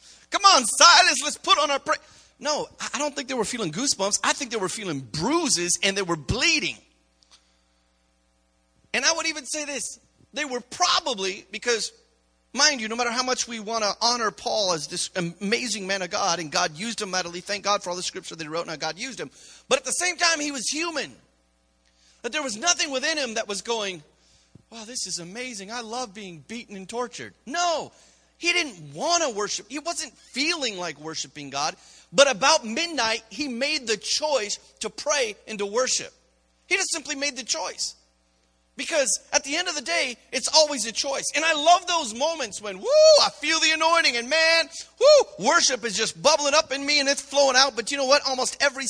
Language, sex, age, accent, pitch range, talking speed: English, male, 30-49, American, 180-295 Hz, 210 wpm